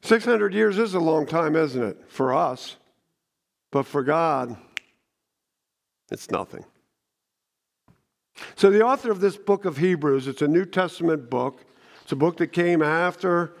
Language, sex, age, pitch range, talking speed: English, male, 50-69, 145-175 Hz, 150 wpm